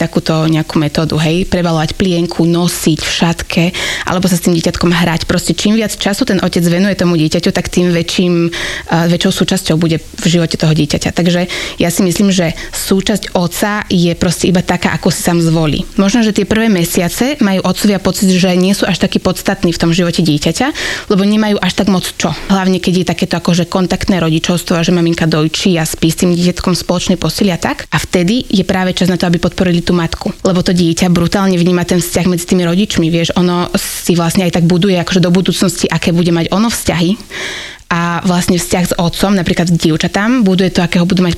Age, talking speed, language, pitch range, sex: 20-39, 205 wpm, Slovak, 170-190 Hz, female